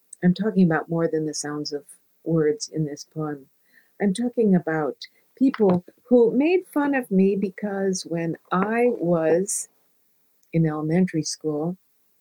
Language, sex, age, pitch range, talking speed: English, female, 50-69, 160-205 Hz, 140 wpm